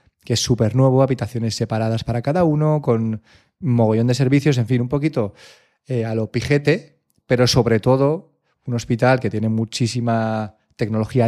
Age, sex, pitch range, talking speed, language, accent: 30-49, male, 115-135 Hz, 165 wpm, Spanish, Spanish